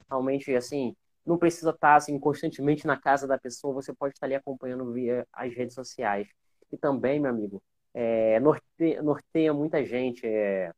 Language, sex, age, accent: Portuguese, male, 20-39, Brazilian